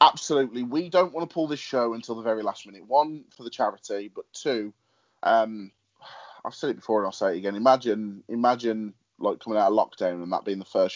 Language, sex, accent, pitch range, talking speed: English, male, British, 100-130 Hz, 225 wpm